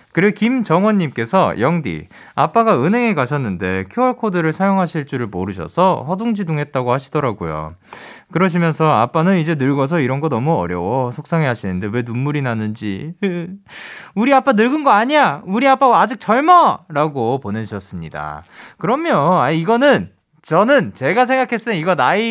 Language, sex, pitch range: Korean, male, 145-230 Hz